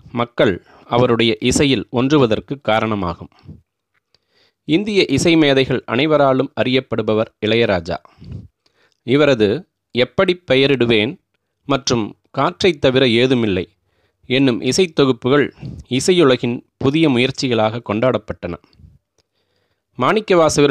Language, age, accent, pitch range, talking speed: Tamil, 30-49, native, 115-140 Hz, 75 wpm